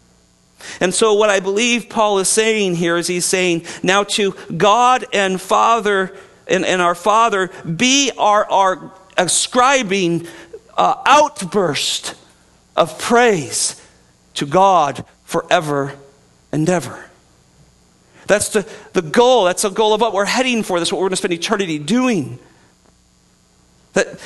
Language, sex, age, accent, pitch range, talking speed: English, male, 50-69, American, 135-205 Hz, 135 wpm